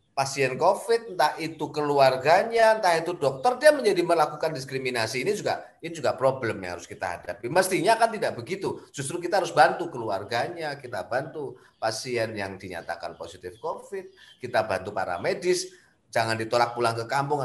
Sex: male